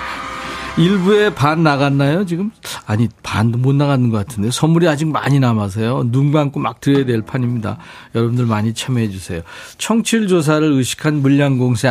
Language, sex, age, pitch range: Korean, male, 40-59, 120-170 Hz